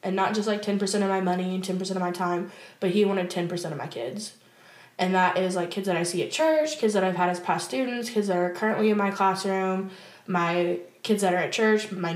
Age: 20-39